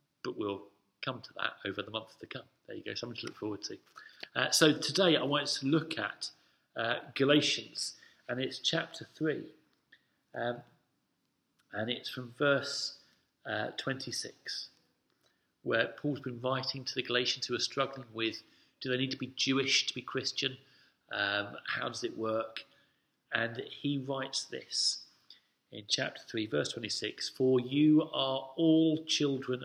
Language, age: English, 40-59